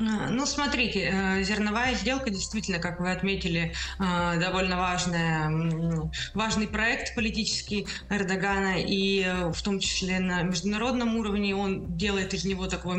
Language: Russian